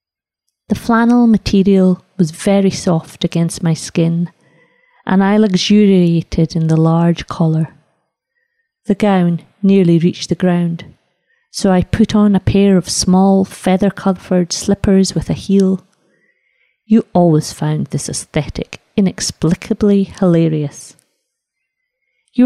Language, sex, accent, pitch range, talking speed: English, female, British, 165-210 Hz, 115 wpm